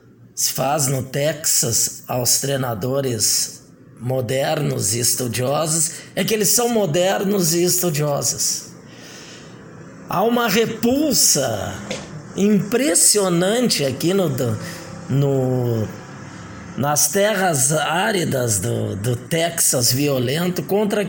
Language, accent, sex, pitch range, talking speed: Portuguese, Brazilian, male, 135-200 Hz, 85 wpm